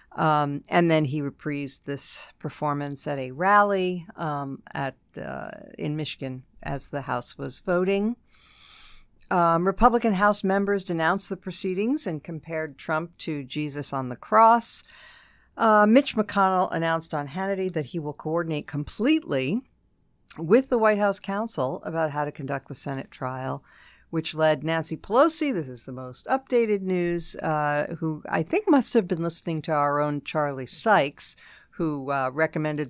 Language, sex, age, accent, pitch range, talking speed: English, female, 50-69, American, 145-195 Hz, 155 wpm